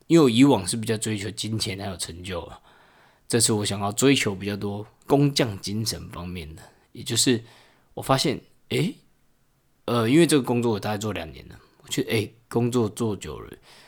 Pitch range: 100-125 Hz